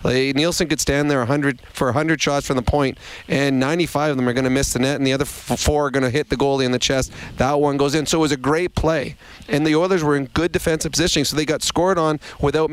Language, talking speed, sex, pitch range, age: English, 275 wpm, male, 130-150 Hz, 30-49